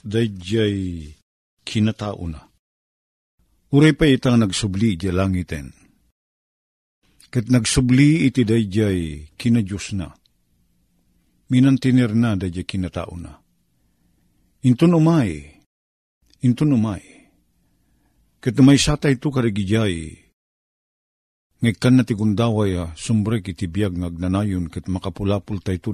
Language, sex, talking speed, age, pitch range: Filipino, male, 95 wpm, 50-69, 85-125 Hz